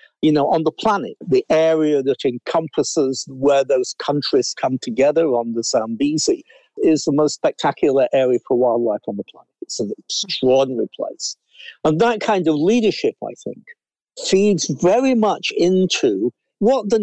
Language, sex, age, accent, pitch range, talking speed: English, male, 60-79, British, 135-205 Hz, 155 wpm